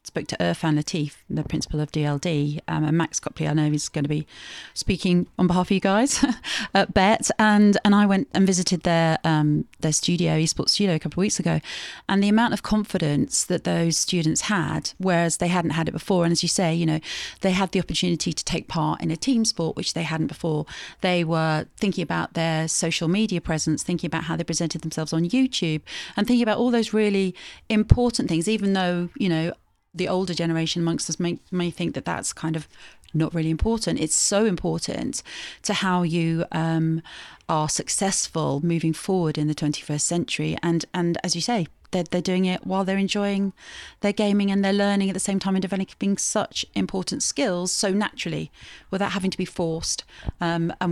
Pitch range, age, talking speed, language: 160-195 Hz, 40-59, 200 wpm, English